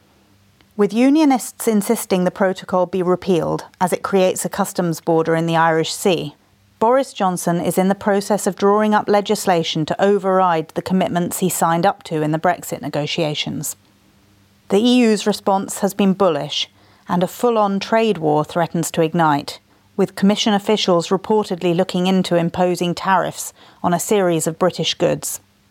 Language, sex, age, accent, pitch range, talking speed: English, female, 40-59, British, 170-205 Hz, 155 wpm